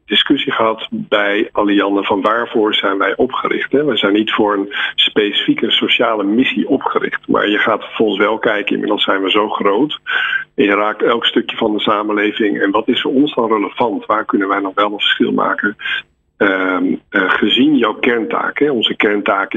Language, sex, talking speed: Dutch, male, 180 wpm